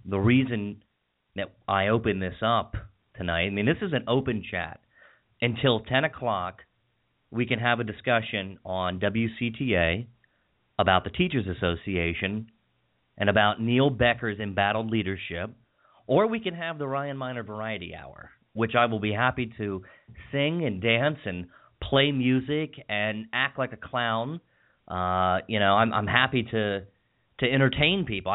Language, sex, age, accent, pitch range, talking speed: English, male, 30-49, American, 100-125 Hz, 150 wpm